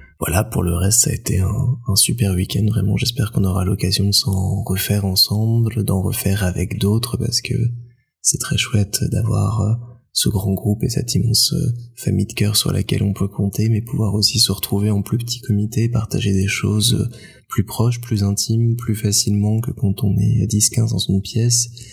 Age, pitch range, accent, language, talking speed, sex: 20-39, 100-120 Hz, French, French, 190 wpm, male